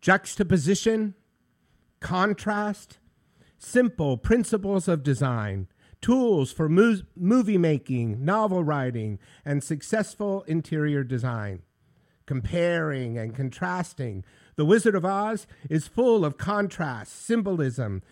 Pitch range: 130-195 Hz